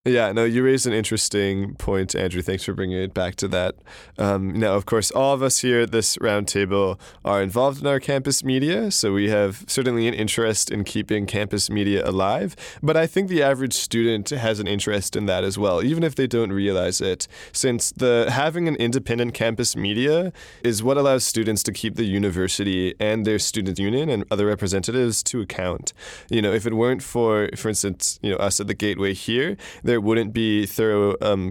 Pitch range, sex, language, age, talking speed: 100-120 Hz, male, English, 20-39, 200 wpm